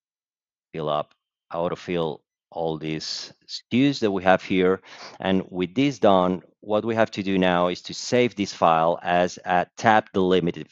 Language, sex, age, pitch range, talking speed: English, male, 40-59, 90-105 Hz, 170 wpm